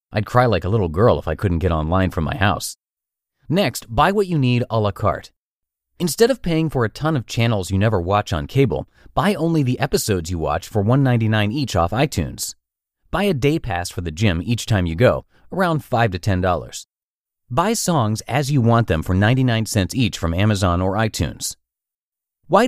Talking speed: 200 wpm